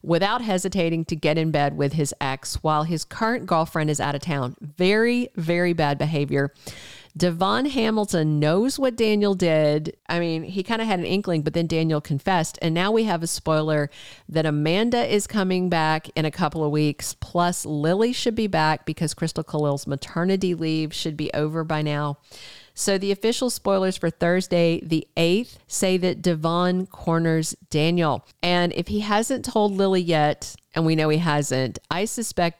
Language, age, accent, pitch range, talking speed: English, 50-69, American, 155-200 Hz, 180 wpm